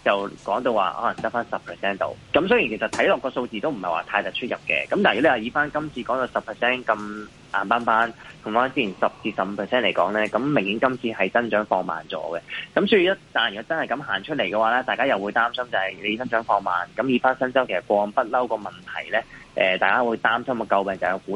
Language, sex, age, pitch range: Chinese, male, 20-39, 105-130 Hz